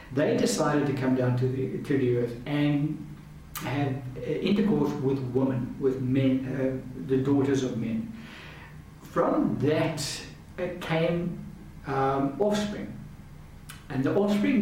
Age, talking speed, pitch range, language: 60-79, 125 wpm, 125-150 Hz, English